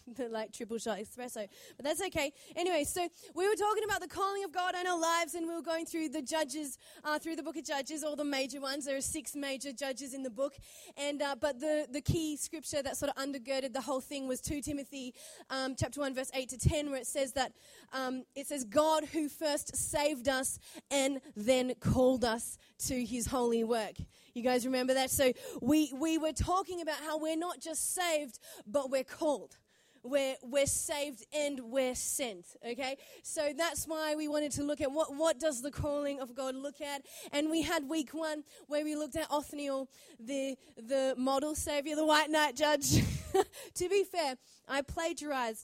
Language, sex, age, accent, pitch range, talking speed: English, female, 20-39, Australian, 265-320 Hz, 205 wpm